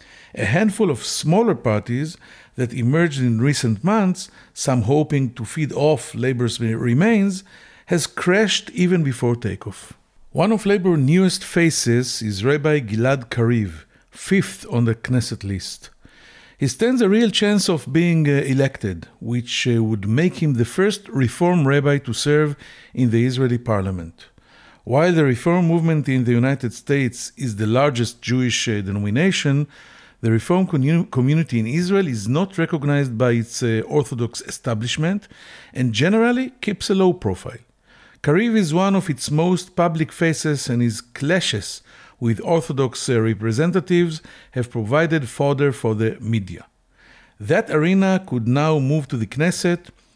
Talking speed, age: 140 wpm, 50-69